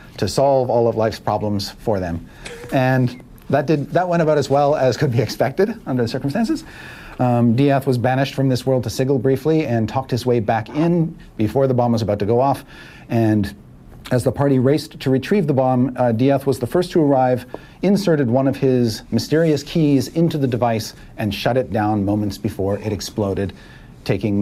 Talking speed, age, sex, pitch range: 200 wpm, 40-59, male, 105-135 Hz